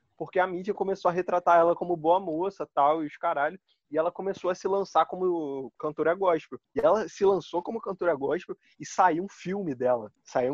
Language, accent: Portuguese, Brazilian